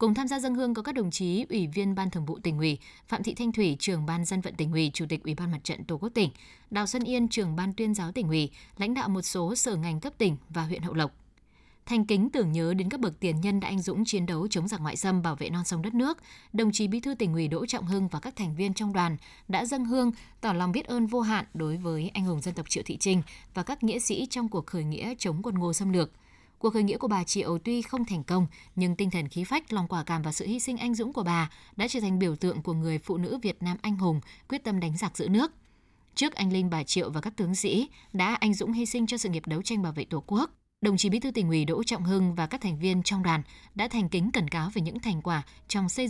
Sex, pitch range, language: female, 170-225 Hz, Vietnamese